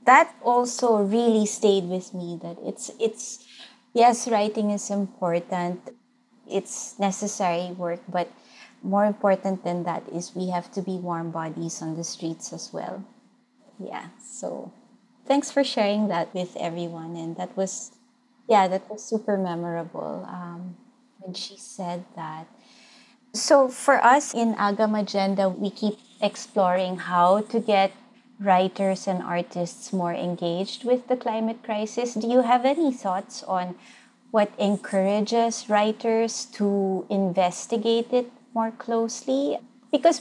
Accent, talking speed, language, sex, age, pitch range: Filipino, 135 wpm, English, female, 20-39, 180-240 Hz